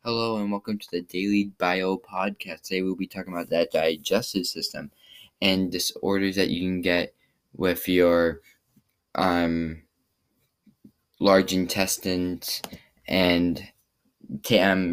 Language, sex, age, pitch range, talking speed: English, male, 10-29, 90-105 Hz, 115 wpm